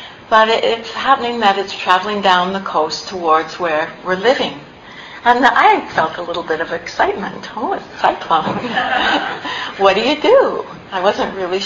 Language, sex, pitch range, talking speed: English, female, 165-205 Hz, 165 wpm